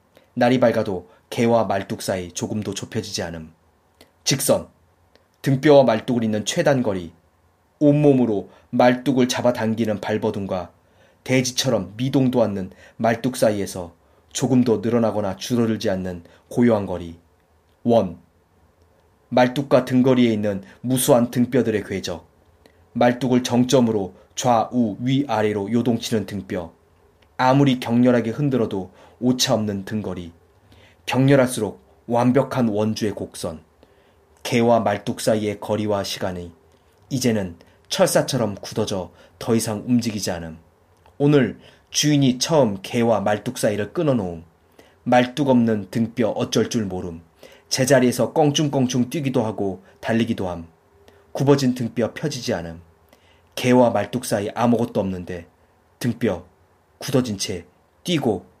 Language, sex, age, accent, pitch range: Korean, male, 30-49, native, 90-125 Hz